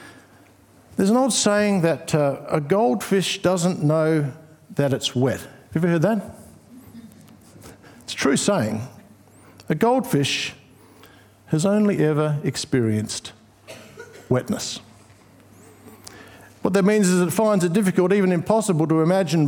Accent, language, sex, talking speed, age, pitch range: Australian, English, male, 125 wpm, 60-79, 155-205 Hz